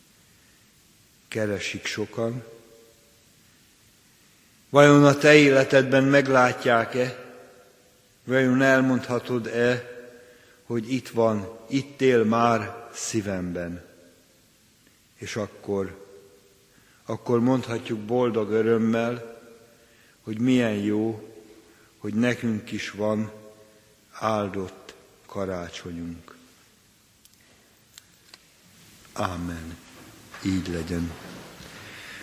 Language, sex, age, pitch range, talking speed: Hungarian, male, 60-79, 105-130 Hz, 65 wpm